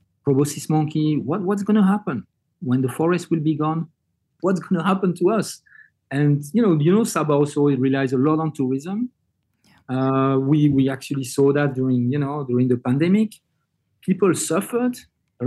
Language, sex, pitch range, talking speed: English, male, 135-175 Hz, 180 wpm